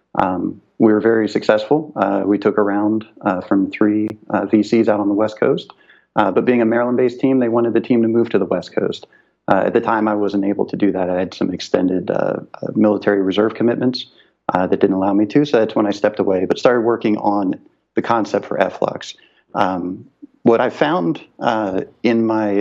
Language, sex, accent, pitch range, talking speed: English, male, American, 100-115 Hz, 215 wpm